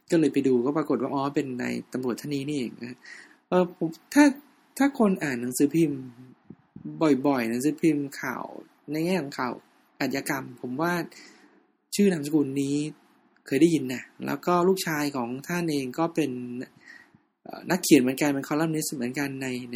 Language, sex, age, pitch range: Thai, male, 20-39, 140-190 Hz